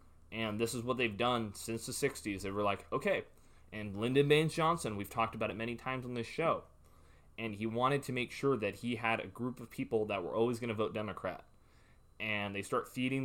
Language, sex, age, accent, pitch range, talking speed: English, male, 20-39, American, 110-140 Hz, 225 wpm